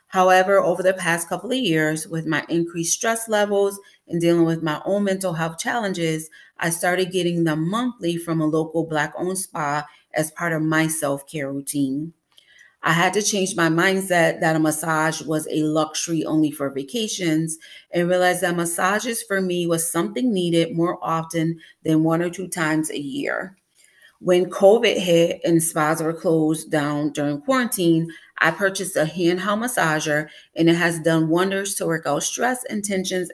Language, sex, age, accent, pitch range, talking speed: English, female, 30-49, American, 155-190 Hz, 170 wpm